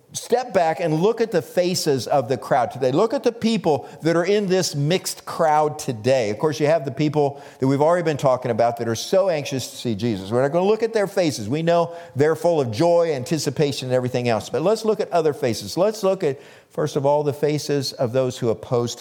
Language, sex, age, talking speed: English, male, 50-69, 245 wpm